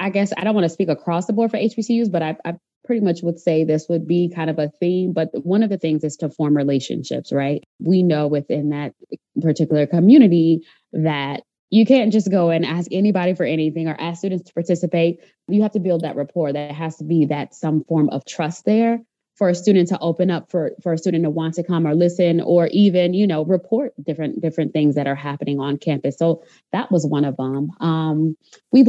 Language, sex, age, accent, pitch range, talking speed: English, female, 20-39, American, 155-185 Hz, 230 wpm